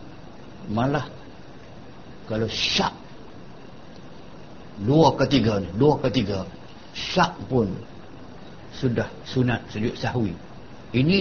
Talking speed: 75 wpm